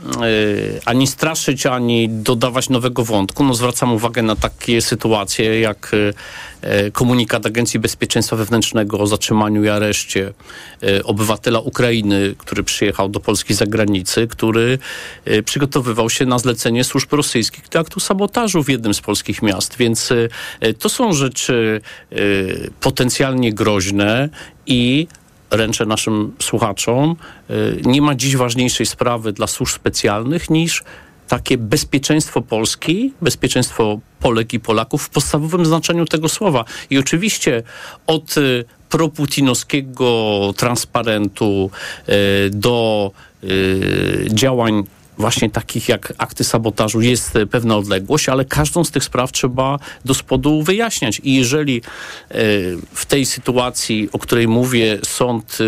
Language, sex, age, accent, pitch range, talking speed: Polish, male, 40-59, native, 110-135 Hz, 115 wpm